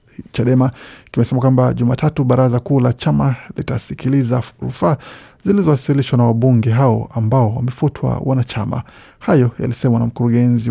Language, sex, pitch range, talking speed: Swahili, male, 115-135 Hz, 120 wpm